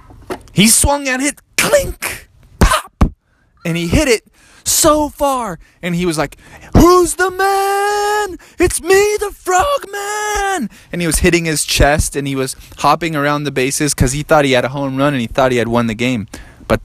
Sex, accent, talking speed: male, American, 190 wpm